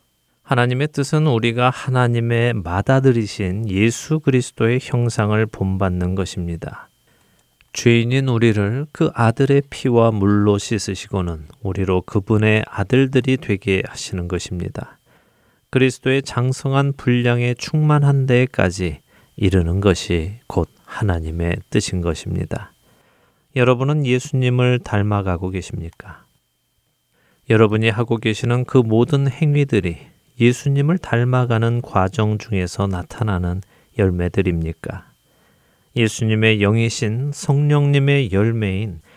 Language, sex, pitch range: Korean, male, 95-125 Hz